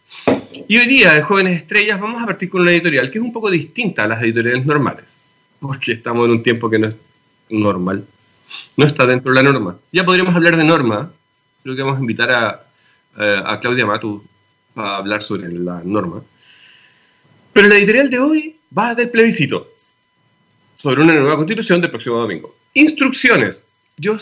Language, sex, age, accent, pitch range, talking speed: Spanish, male, 40-59, Argentinian, 125-185 Hz, 180 wpm